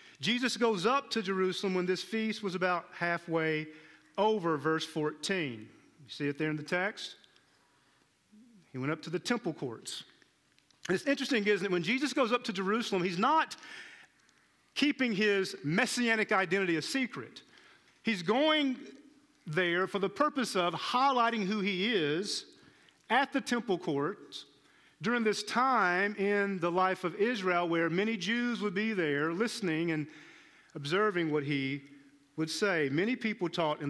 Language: English